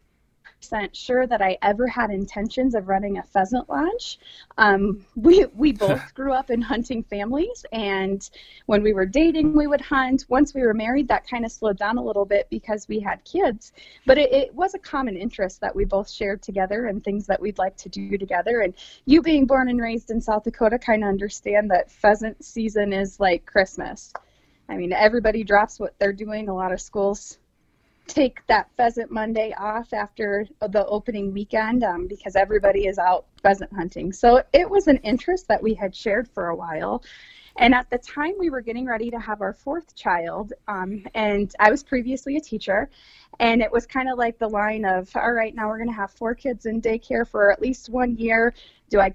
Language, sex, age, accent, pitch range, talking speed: English, female, 20-39, American, 200-250 Hz, 205 wpm